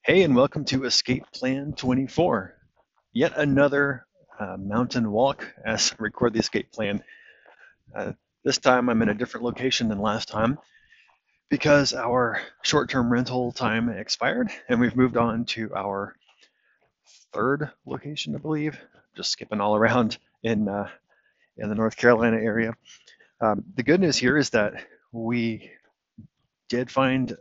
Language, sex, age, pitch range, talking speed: English, male, 30-49, 105-130 Hz, 145 wpm